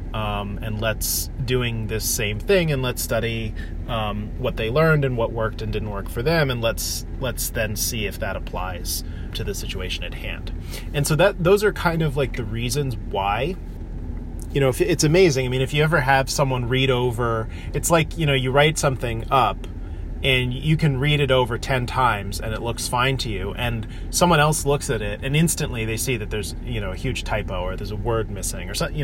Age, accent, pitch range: 30-49, American, 100-135 Hz